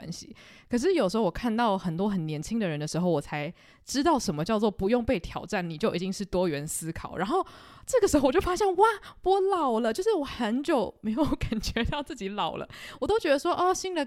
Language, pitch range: Chinese, 190-295 Hz